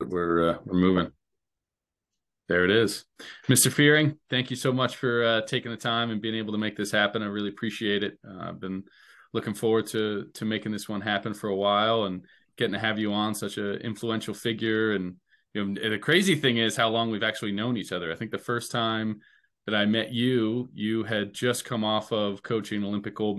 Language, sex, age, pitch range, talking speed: English, male, 20-39, 100-115 Hz, 220 wpm